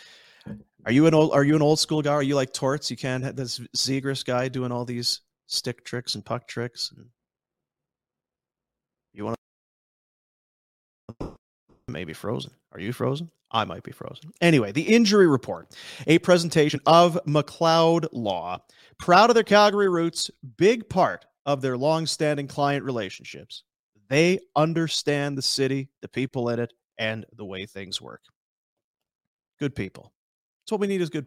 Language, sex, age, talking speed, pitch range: English, male, 30-49, 155 wpm, 120-165 Hz